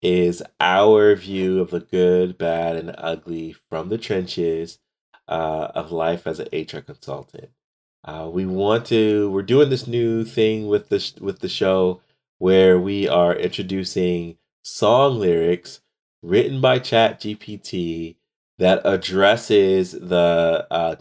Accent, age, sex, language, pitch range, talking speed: American, 30-49, male, English, 85-95 Hz, 130 wpm